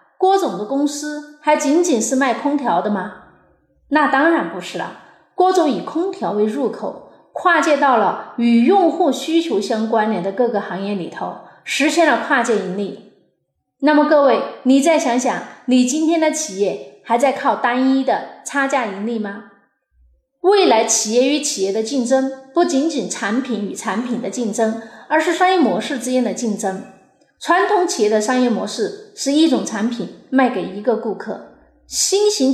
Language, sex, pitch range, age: Chinese, female, 225-300 Hz, 30-49